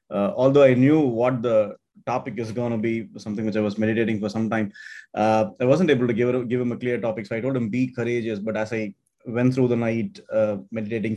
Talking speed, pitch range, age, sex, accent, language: 240 wpm, 105-125 Hz, 20-39, male, Indian, English